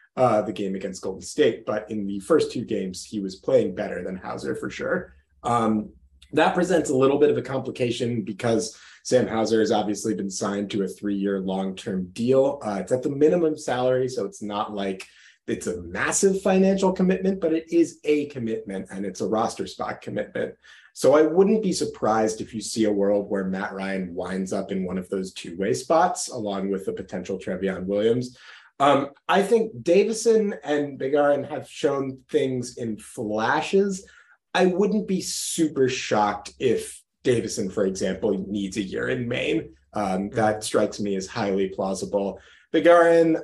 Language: English